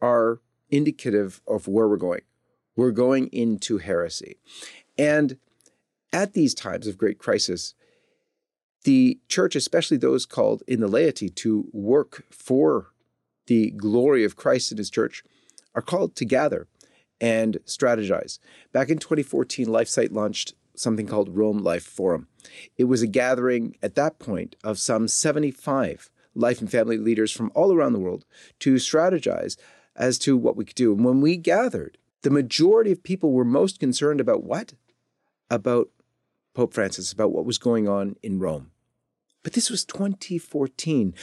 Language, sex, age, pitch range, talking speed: English, male, 40-59, 110-145 Hz, 155 wpm